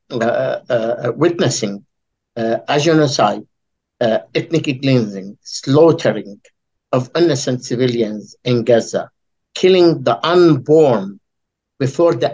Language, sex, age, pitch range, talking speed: Arabic, male, 60-79, 120-145 Hz, 95 wpm